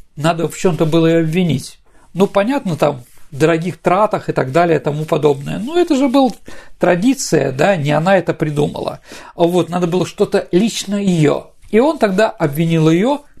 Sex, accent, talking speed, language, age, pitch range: male, native, 175 wpm, Russian, 50-69, 160-215 Hz